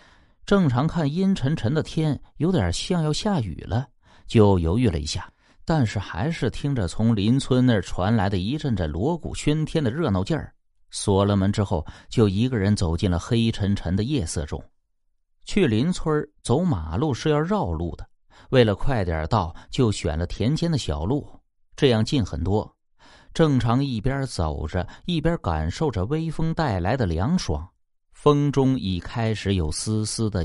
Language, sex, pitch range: Chinese, male, 90-150 Hz